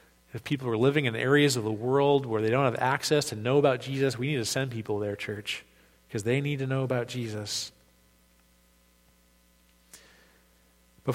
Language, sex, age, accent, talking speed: English, male, 40-59, American, 180 wpm